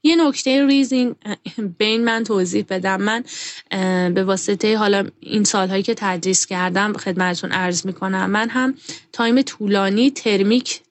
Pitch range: 195-245 Hz